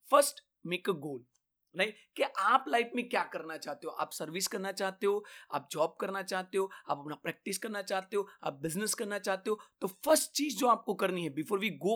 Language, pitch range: Hindi, 180-230 Hz